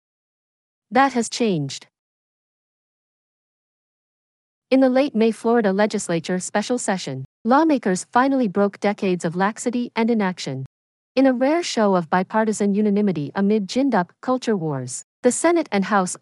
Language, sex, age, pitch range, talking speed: English, female, 50-69, 185-240 Hz, 130 wpm